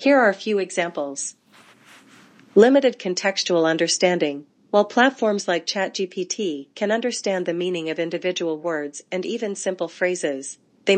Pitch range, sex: 170-205 Hz, female